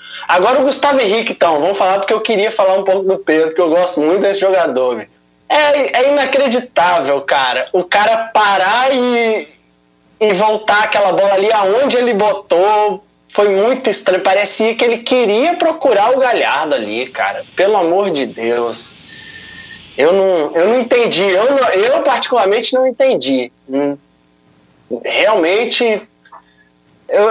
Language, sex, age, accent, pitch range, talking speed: Portuguese, male, 20-39, Brazilian, 170-240 Hz, 145 wpm